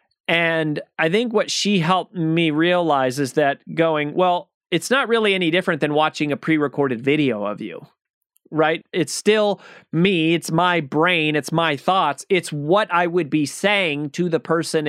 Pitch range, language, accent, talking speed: 145-185 Hz, English, American, 175 wpm